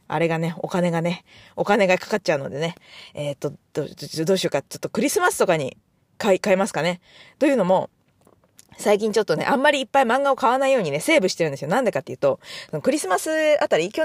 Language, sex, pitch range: Japanese, female, 185-285 Hz